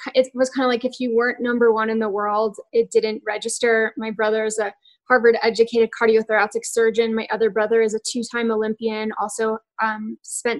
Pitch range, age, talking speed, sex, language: 225-260 Hz, 10-29, 185 wpm, female, English